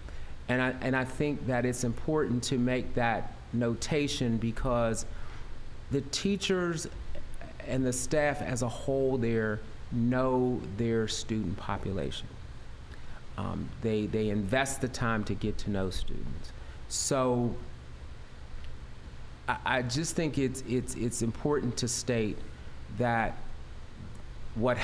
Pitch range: 95-130 Hz